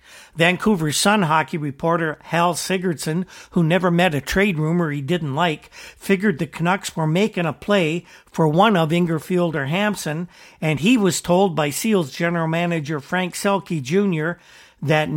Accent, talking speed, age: American, 160 wpm, 50-69